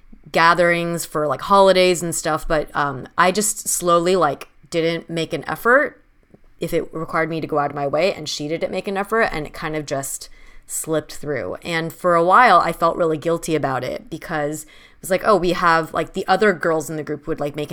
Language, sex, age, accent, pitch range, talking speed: English, female, 20-39, American, 150-180 Hz, 225 wpm